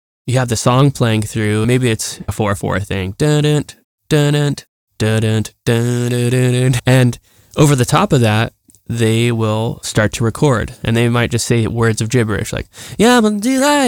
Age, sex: 10-29, male